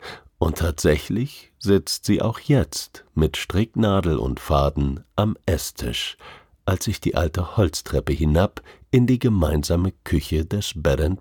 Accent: German